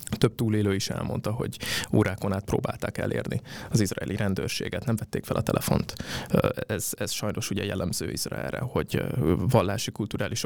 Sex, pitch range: male, 100-115 Hz